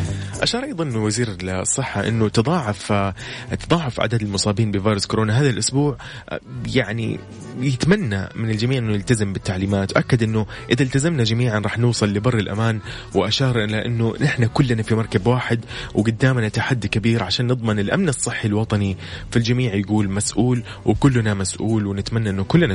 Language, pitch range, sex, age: Arabic, 100-125 Hz, male, 20-39